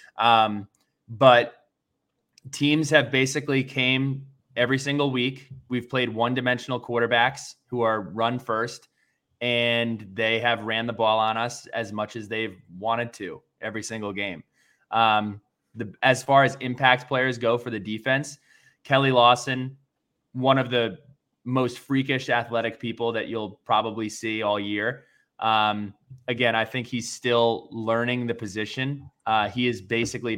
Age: 20-39